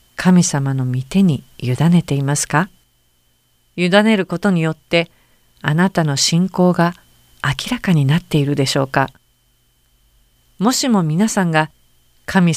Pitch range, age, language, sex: 130-180 Hz, 50-69, Japanese, female